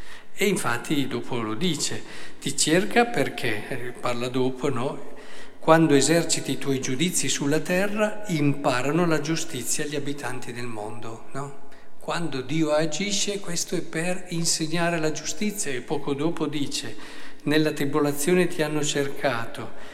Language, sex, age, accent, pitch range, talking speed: Italian, male, 50-69, native, 130-165 Hz, 130 wpm